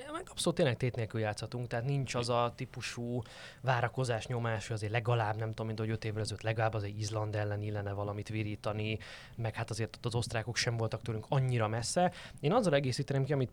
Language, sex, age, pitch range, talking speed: Hungarian, male, 20-39, 105-125 Hz, 205 wpm